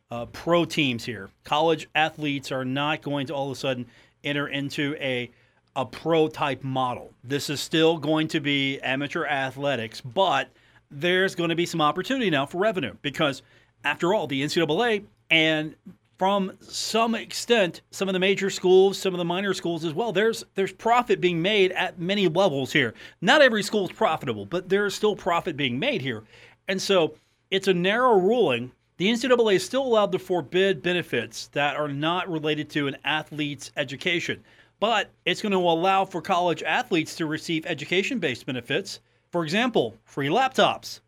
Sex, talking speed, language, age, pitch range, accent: male, 175 wpm, English, 40-59, 145-190 Hz, American